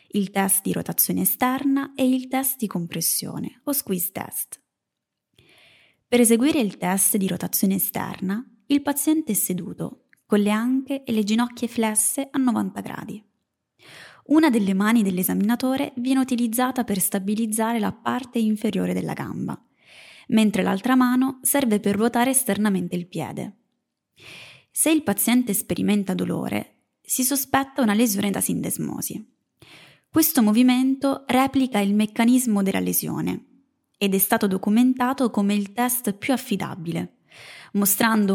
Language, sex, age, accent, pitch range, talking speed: Italian, female, 20-39, native, 200-260 Hz, 130 wpm